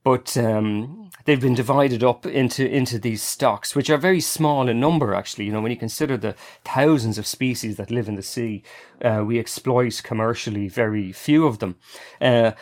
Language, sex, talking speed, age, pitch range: English, male, 190 wpm, 30-49, 110-135 Hz